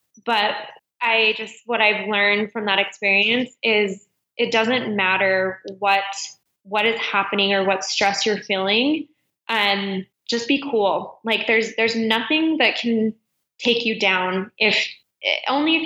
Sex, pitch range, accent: female, 200-240 Hz, American